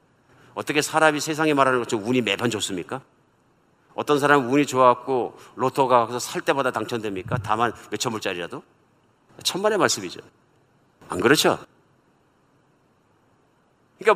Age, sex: 50-69, male